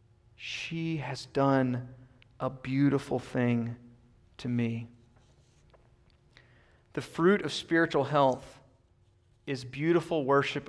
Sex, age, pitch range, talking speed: male, 30-49, 120-160 Hz, 90 wpm